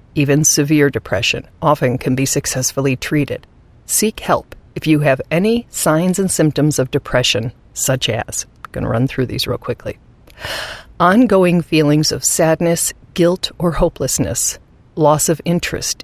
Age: 50-69